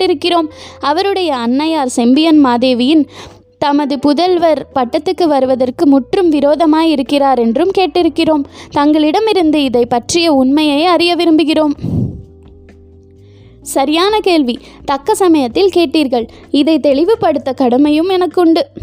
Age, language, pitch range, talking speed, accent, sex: 20-39, Tamil, 265-340 Hz, 90 wpm, native, female